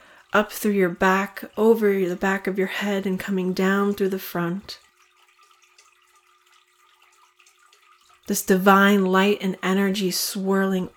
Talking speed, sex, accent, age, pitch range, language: 120 wpm, female, American, 30-49, 185-305 Hz, English